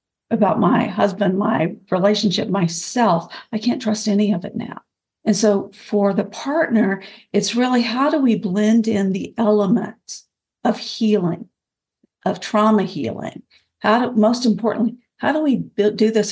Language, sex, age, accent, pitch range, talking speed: English, female, 50-69, American, 195-230 Hz, 150 wpm